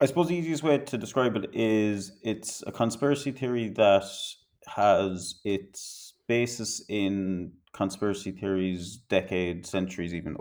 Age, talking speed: 30-49, 135 wpm